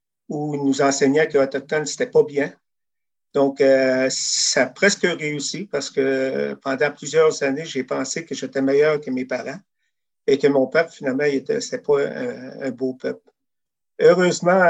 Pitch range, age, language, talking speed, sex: 130-150 Hz, 50-69, French, 165 wpm, male